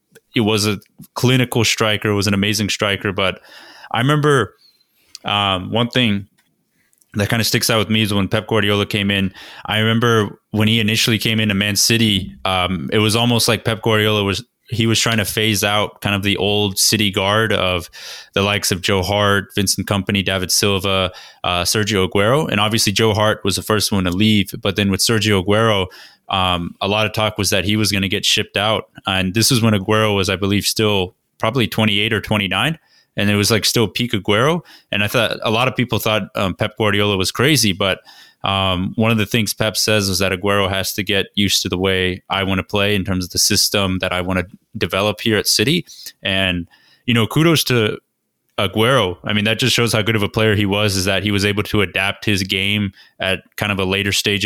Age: 20-39